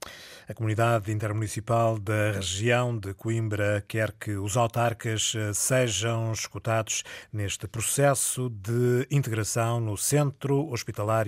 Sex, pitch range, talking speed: male, 115-155 Hz, 105 wpm